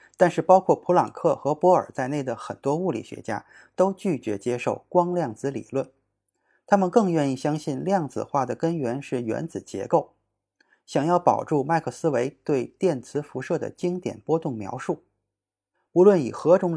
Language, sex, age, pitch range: Chinese, male, 20-39, 125-175 Hz